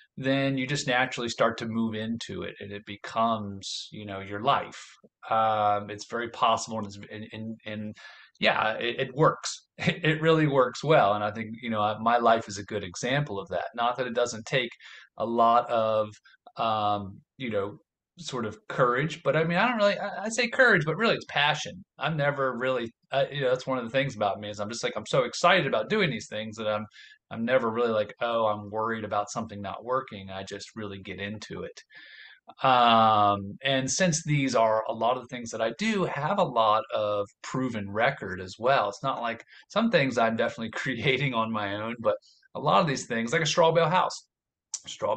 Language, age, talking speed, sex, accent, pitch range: English, 30-49, 205 wpm, male, American, 105-140 Hz